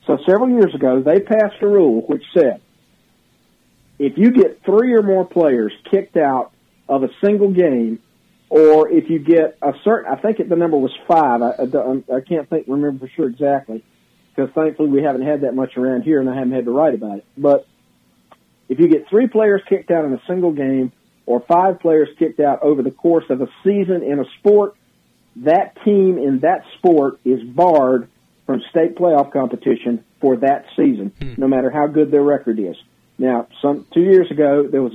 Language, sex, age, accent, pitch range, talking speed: English, male, 50-69, American, 130-170 Hz, 195 wpm